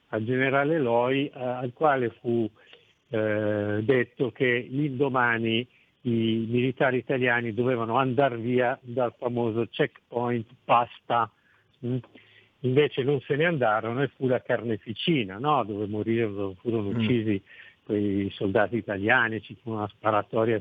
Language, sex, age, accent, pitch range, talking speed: Italian, male, 50-69, native, 110-135 Hz, 120 wpm